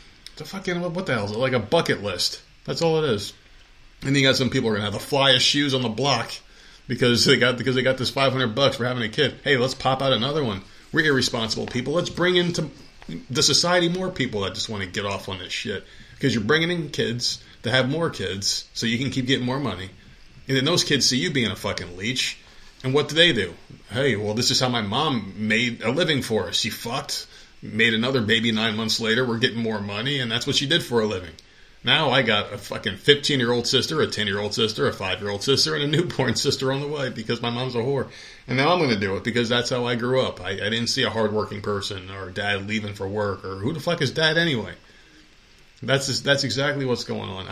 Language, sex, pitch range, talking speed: English, male, 110-140 Hz, 255 wpm